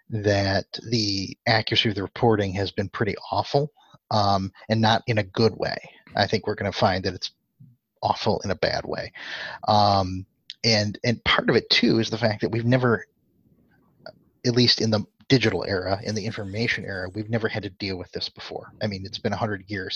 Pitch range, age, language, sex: 100-120 Hz, 30-49, English, male